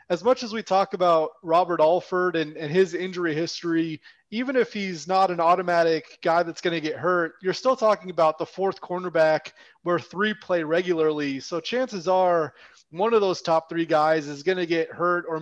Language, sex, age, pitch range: English, male, 30-49, 160-185 Hz